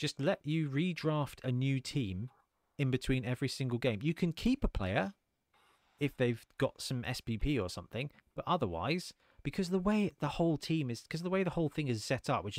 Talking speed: 205 wpm